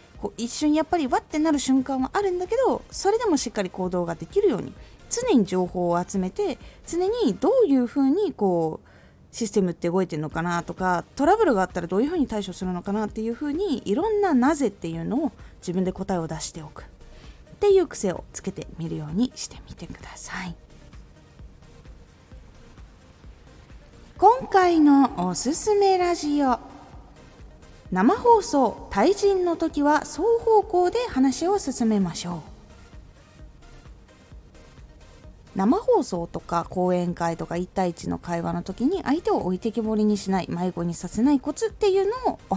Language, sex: Japanese, female